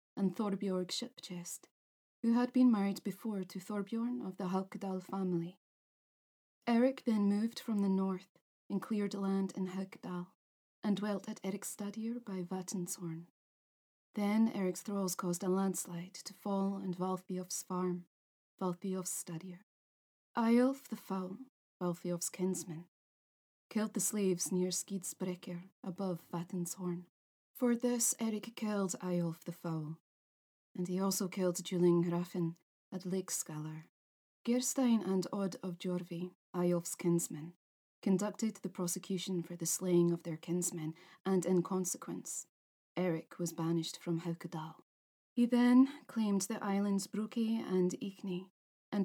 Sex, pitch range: female, 180-205 Hz